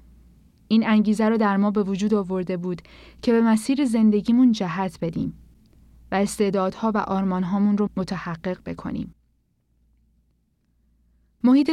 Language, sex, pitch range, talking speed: Persian, female, 185-225 Hz, 120 wpm